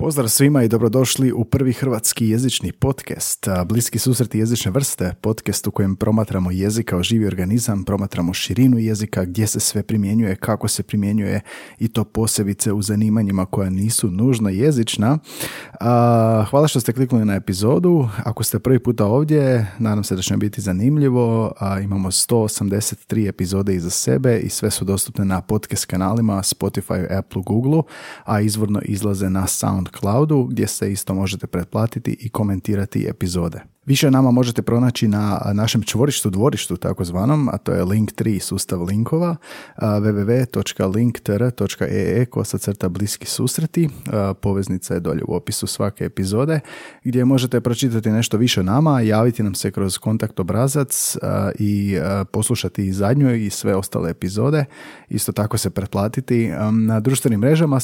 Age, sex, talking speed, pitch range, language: 30-49, male, 145 wpm, 100-120 Hz, Croatian